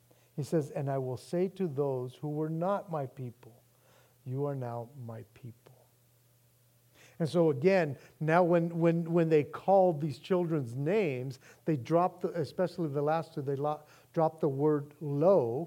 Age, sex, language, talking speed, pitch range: 50-69, male, English, 160 wpm, 125-170 Hz